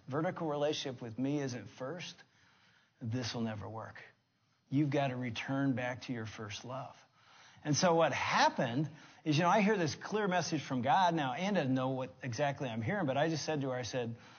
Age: 40-59